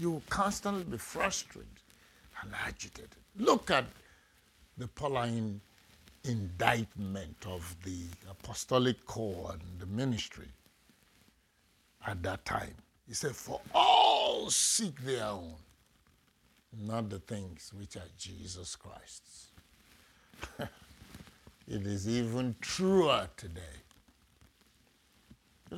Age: 60-79